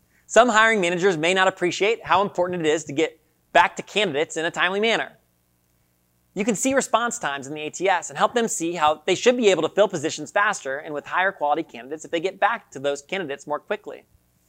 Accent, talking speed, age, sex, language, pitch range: American, 225 wpm, 30-49, male, English, 135-200 Hz